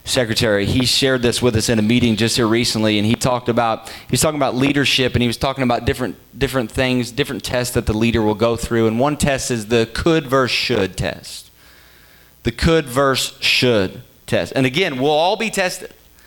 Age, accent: 30-49, American